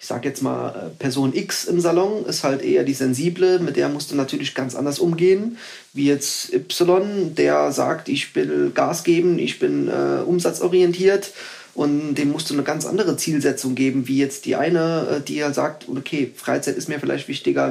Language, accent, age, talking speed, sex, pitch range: German, German, 30-49, 190 wpm, male, 125-165 Hz